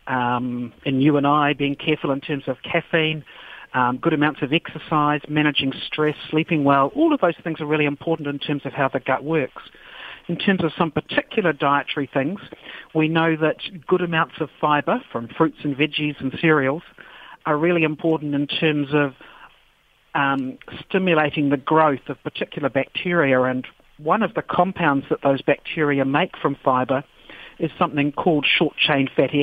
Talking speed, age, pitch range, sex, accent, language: 170 wpm, 50-69, 140-160 Hz, male, Australian, English